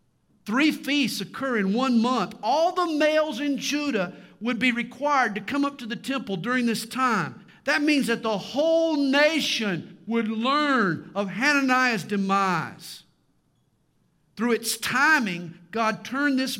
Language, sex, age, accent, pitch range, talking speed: English, male, 50-69, American, 155-225 Hz, 145 wpm